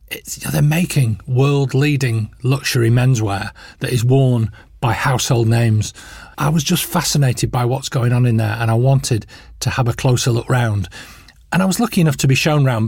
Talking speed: 180 wpm